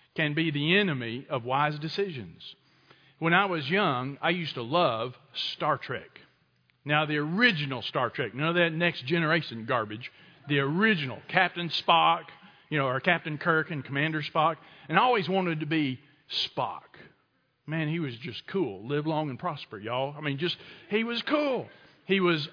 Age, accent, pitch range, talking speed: 50-69, American, 145-190 Hz, 180 wpm